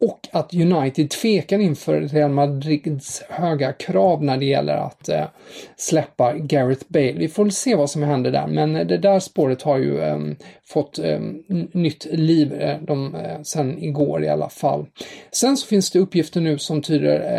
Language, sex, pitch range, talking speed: English, male, 140-170 Hz, 155 wpm